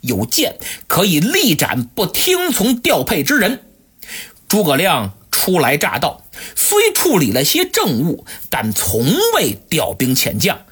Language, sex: Chinese, male